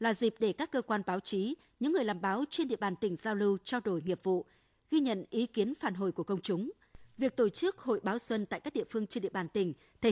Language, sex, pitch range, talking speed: Vietnamese, female, 195-255 Hz, 275 wpm